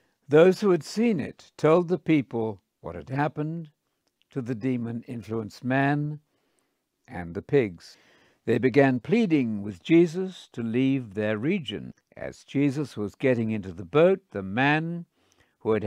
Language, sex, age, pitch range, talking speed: English, male, 60-79, 110-150 Hz, 145 wpm